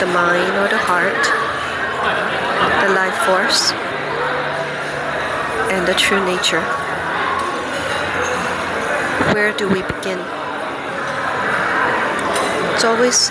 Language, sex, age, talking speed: English, female, 40-59, 80 wpm